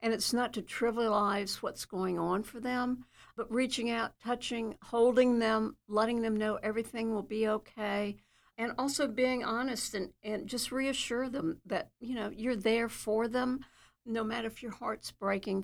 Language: English